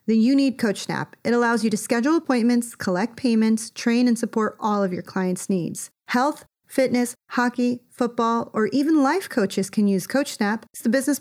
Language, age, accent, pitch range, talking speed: English, 30-49, American, 185-230 Hz, 180 wpm